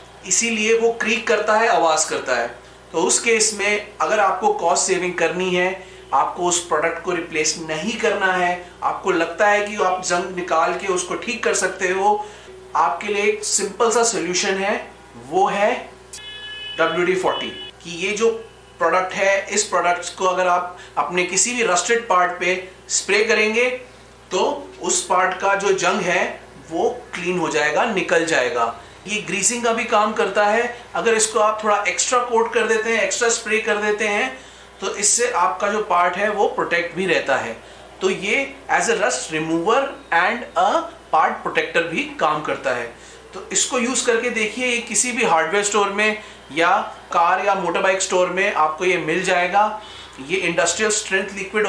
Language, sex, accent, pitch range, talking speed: Hindi, male, native, 180-220 Hz, 175 wpm